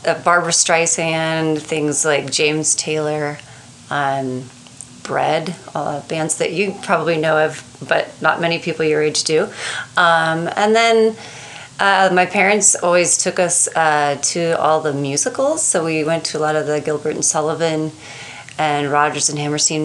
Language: English